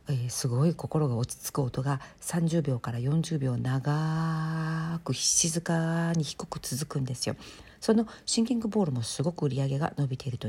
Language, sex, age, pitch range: Japanese, female, 50-69, 130-180 Hz